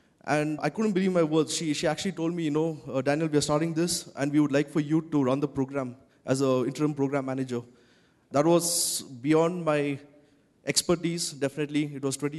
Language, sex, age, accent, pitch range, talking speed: English, male, 20-39, Indian, 140-165 Hz, 205 wpm